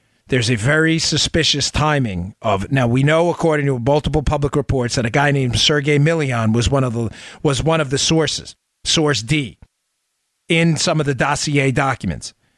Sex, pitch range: male, 110-140 Hz